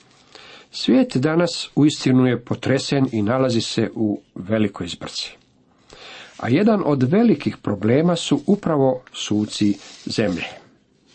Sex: male